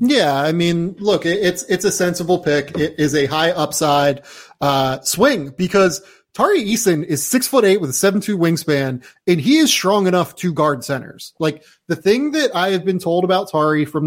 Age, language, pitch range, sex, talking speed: 30-49, English, 145-190 Hz, male, 200 wpm